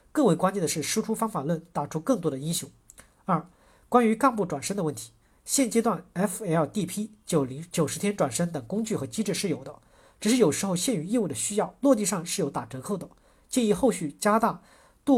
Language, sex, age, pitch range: Chinese, male, 50-69, 150-215 Hz